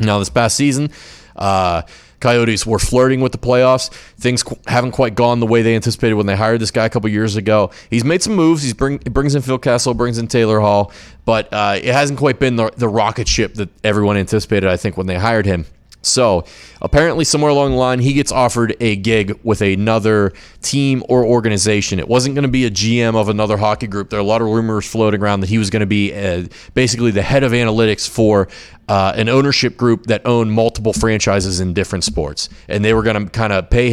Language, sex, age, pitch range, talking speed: English, male, 30-49, 100-115 Hz, 225 wpm